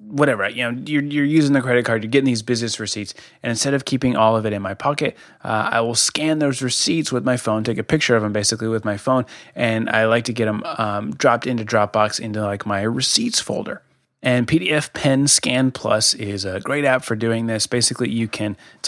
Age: 20-39